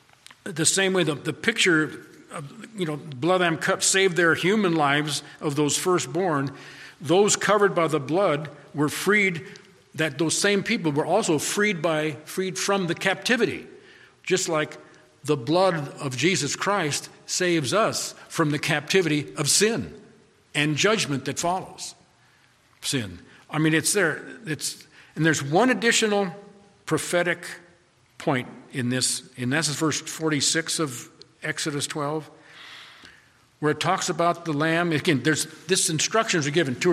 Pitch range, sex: 145-180 Hz, male